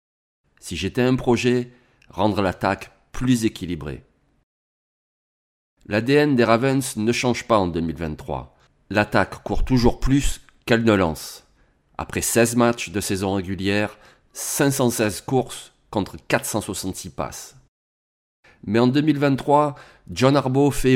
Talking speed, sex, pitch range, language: 115 wpm, male, 95-125 Hz, French